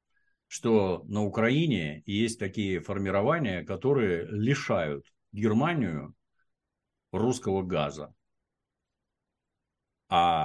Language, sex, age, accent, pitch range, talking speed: Russian, male, 50-69, native, 95-130 Hz, 70 wpm